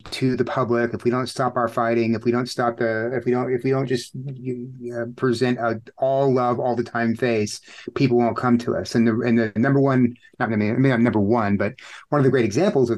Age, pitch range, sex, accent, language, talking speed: 30-49, 120-135 Hz, male, American, English, 270 wpm